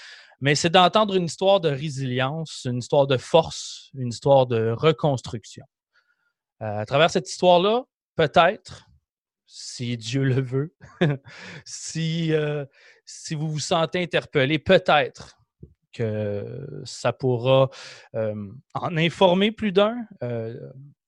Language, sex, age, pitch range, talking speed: French, male, 30-49, 130-175 Hz, 115 wpm